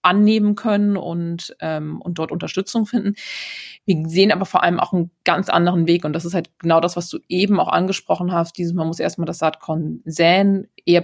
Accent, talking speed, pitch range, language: German, 205 wpm, 150-175 Hz, German